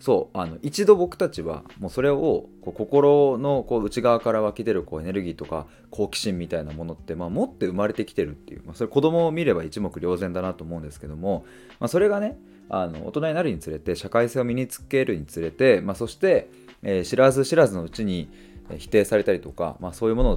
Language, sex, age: Japanese, male, 20-39